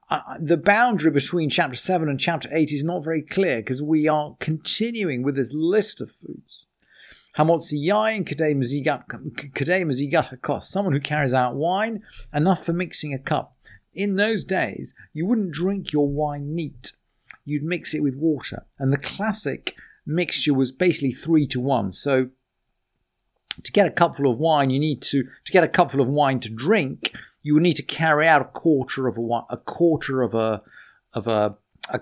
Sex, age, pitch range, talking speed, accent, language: male, 50-69, 130-170 Hz, 170 wpm, British, English